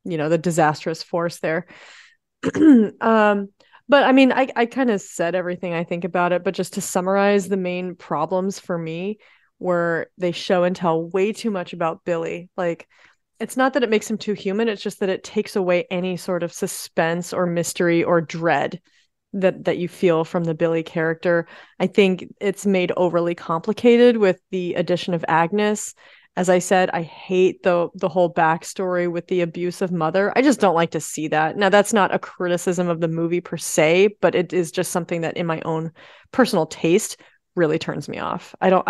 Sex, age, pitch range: female, 30-49, 170-205 Hz